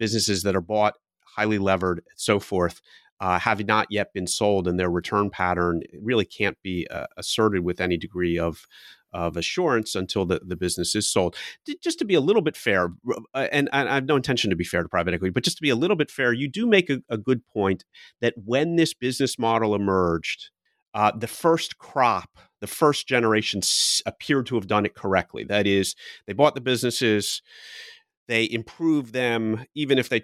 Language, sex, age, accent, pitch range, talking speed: English, male, 30-49, American, 100-130 Hz, 195 wpm